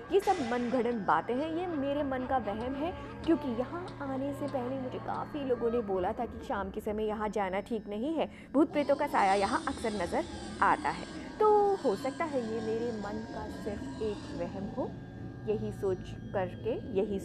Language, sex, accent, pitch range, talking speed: Hindi, female, native, 210-285 Hz, 195 wpm